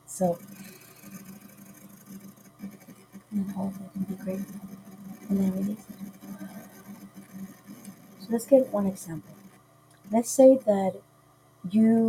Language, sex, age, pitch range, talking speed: English, female, 30-49, 170-200 Hz, 90 wpm